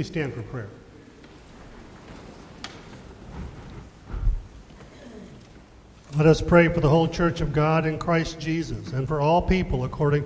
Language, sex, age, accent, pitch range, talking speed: English, male, 40-59, American, 130-160 Hz, 115 wpm